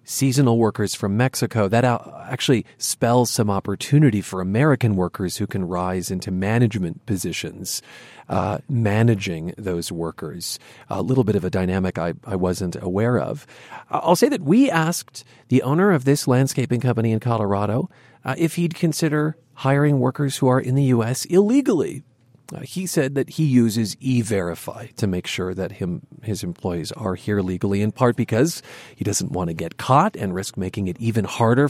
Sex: male